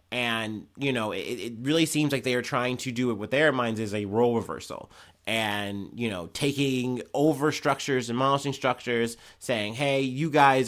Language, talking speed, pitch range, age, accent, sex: English, 185 wpm, 100-125 Hz, 30-49, American, male